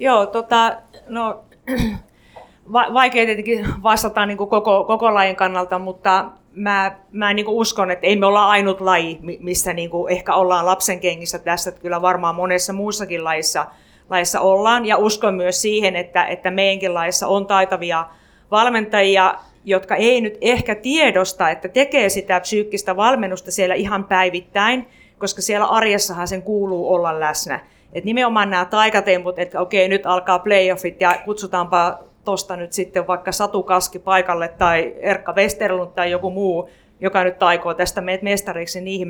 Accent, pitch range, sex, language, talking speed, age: native, 175-205 Hz, female, Finnish, 155 wpm, 30-49